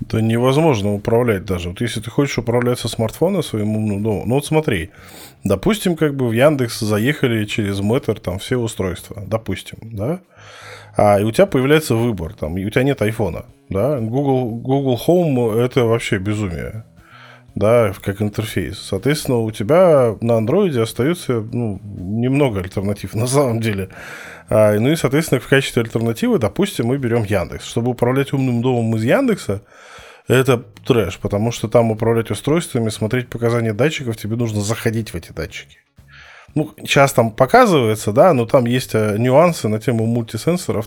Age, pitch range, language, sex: 20-39, 105-130 Hz, Russian, male